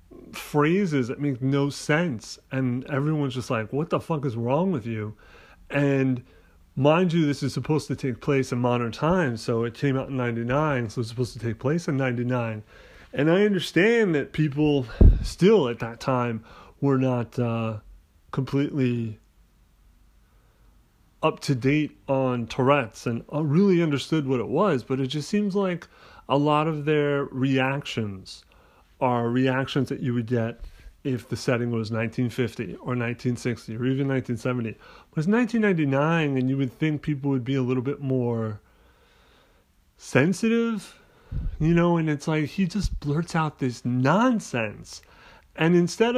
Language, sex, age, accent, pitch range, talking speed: English, male, 30-49, American, 120-160 Hz, 155 wpm